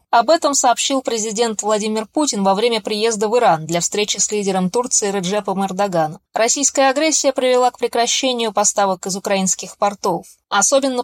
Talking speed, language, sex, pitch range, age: 150 wpm, Russian, female, 200-245 Hz, 20-39